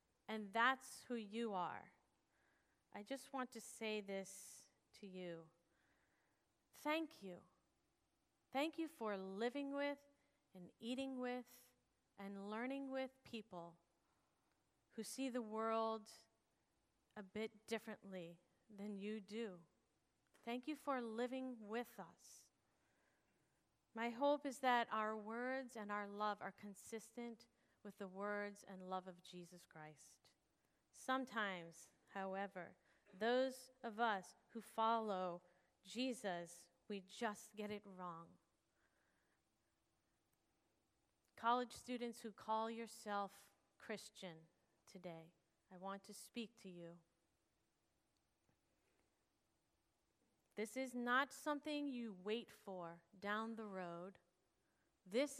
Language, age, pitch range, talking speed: English, 40-59, 190-240 Hz, 105 wpm